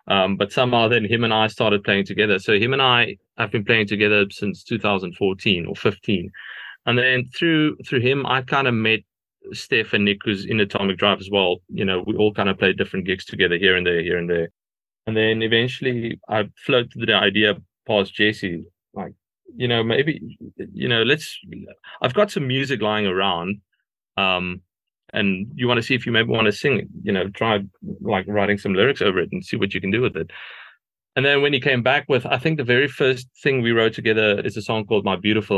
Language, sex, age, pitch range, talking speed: English, male, 30-49, 100-125 Hz, 220 wpm